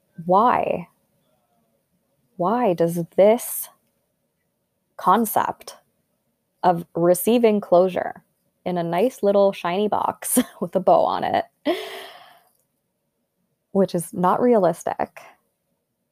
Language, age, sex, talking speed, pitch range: English, 20-39, female, 85 wpm, 190-265 Hz